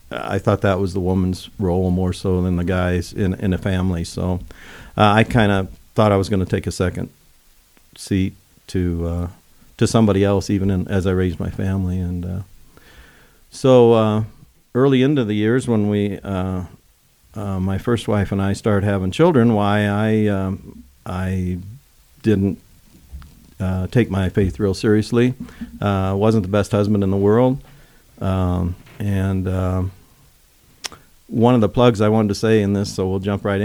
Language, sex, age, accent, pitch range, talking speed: English, male, 50-69, American, 95-105 Hz, 175 wpm